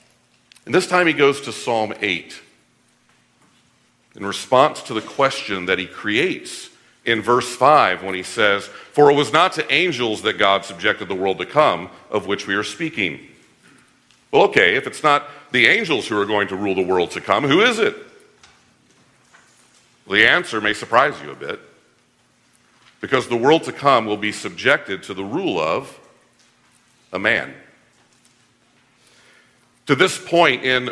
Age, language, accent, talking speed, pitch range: 50-69, English, American, 165 wpm, 105-130 Hz